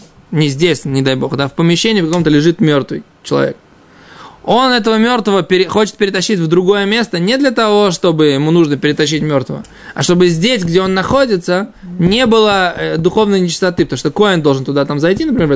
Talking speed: 195 wpm